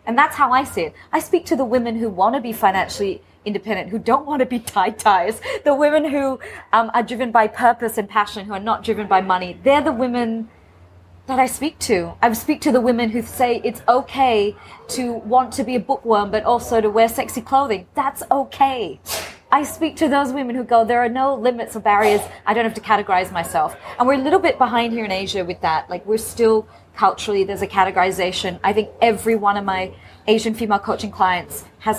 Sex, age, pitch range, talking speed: female, 30-49, 195-255 Hz, 220 wpm